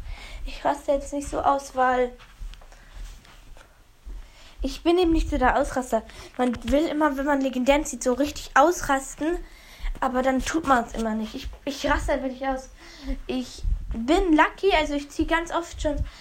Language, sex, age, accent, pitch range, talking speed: German, female, 10-29, German, 250-300 Hz, 165 wpm